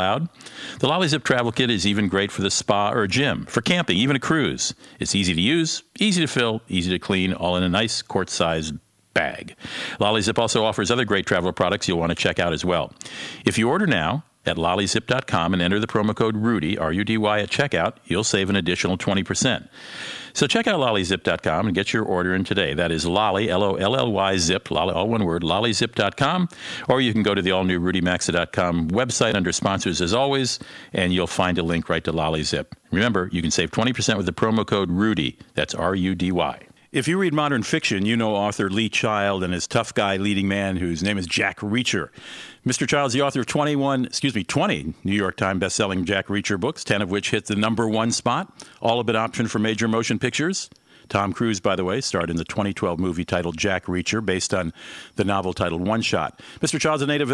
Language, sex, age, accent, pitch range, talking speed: English, male, 50-69, American, 95-120 Hz, 210 wpm